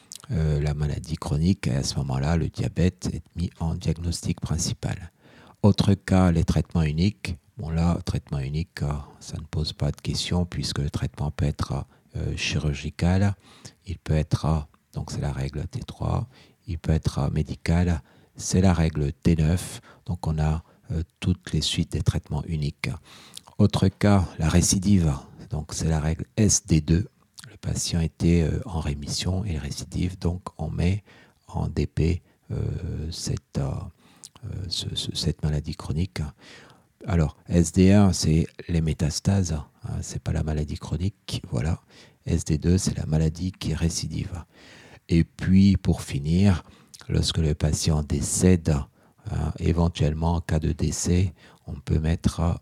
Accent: French